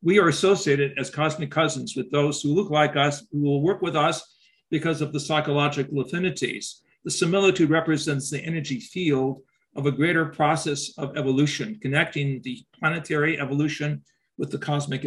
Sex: male